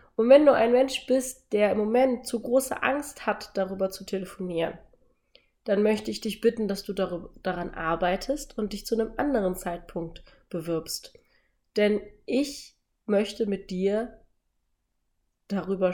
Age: 20-39